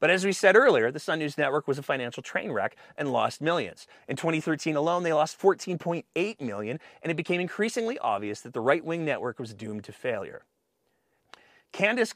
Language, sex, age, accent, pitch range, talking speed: English, male, 30-49, American, 120-180 Hz, 190 wpm